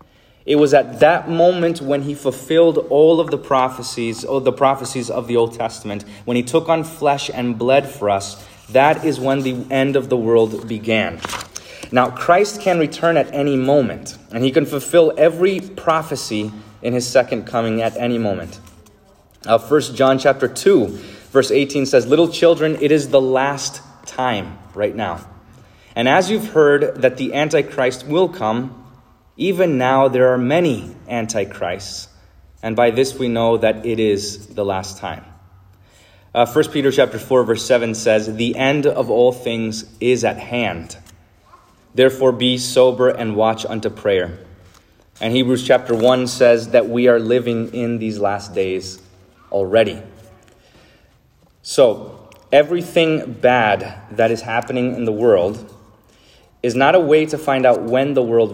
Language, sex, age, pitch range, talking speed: English, male, 20-39, 110-140 Hz, 160 wpm